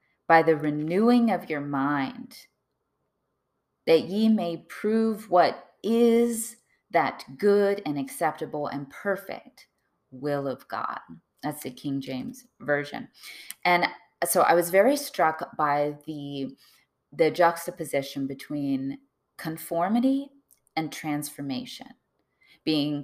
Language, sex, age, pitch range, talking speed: English, female, 20-39, 145-200 Hz, 105 wpm